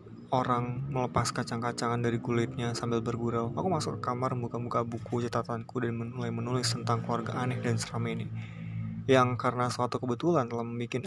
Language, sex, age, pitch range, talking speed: Indonesian, male, 20-39, 115-130 Hz, 155 wpm